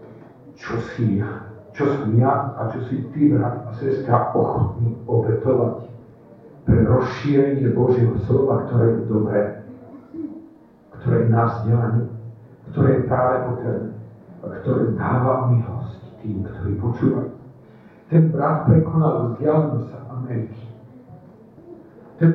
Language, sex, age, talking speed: Slovak, male, 50-69, 110 wpm